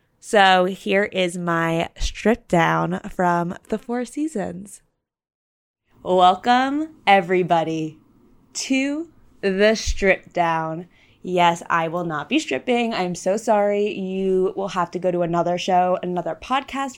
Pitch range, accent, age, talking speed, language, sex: 170-240 Hz, American, 20-39, 125 wpm, English, female